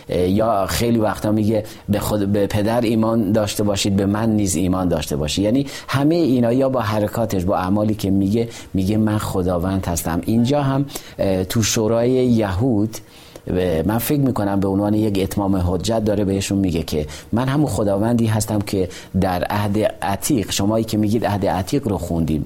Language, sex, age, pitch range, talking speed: Persian, male, 40-59, 95-115 Hz, 165 wpm